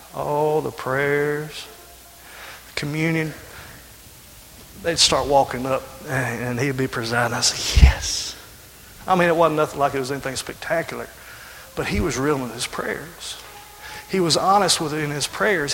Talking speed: 155 wpm